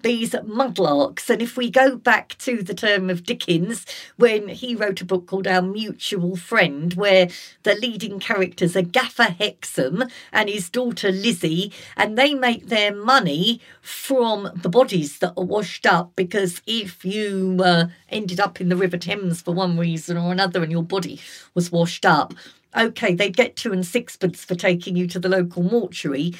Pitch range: 175-215 Hz